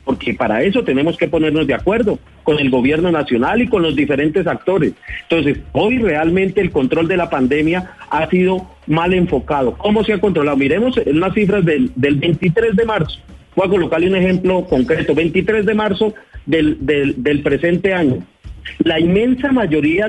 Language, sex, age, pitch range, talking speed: Spanish, male, 40-59, 150-205 Hz, 170 wpm